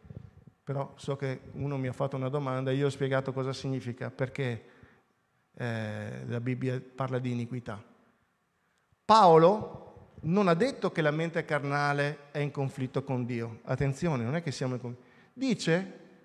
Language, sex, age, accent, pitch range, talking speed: Italian, male, 50-69, native, 130-185 Hz, 160 wpm